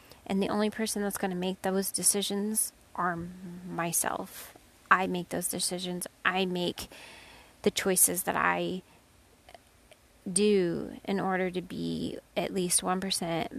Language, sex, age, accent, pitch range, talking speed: English, female, 20-39, American, 175-205 Hz, 130 wpm